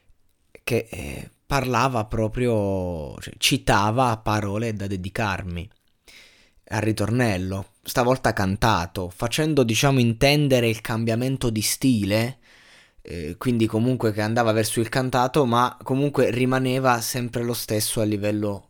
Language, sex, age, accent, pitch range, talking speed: Italian, male, 20-39, native, 110-140 Hz, 110 wpm